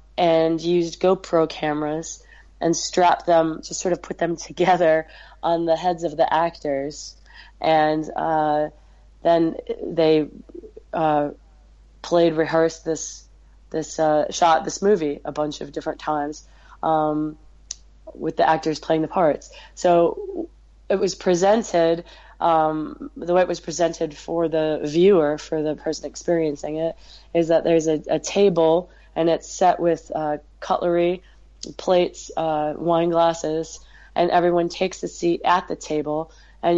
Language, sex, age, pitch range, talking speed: English, female, 20-39, 155-175 Hz, 140 wpm